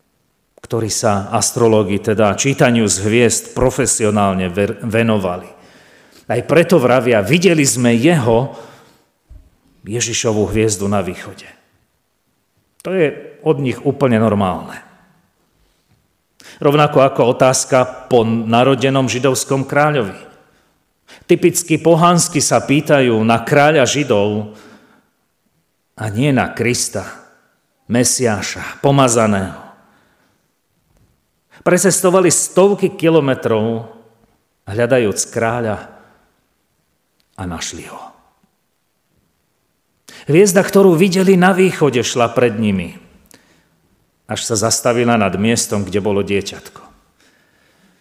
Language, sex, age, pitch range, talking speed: Slovak, male, 40-59, 110-145 Hz, 85 wpm